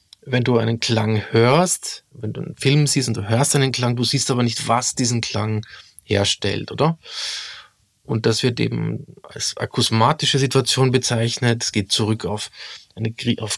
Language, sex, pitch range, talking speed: English, male, 110-140 Hz, 165 wpm